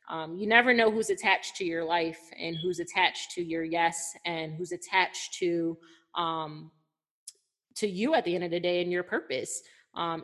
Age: 20-39